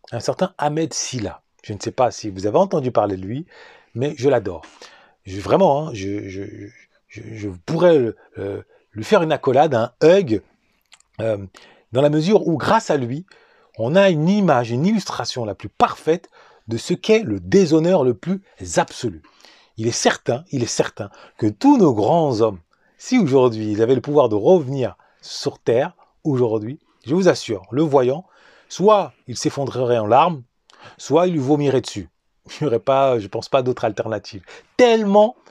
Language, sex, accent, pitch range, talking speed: French, male, French, 115-160 Hz, 175 wpm